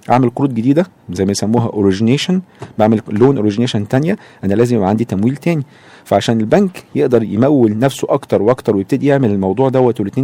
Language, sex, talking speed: Arabic, male, 165 wpm